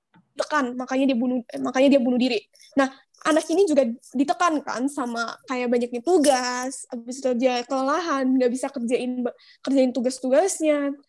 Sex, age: female, 10-29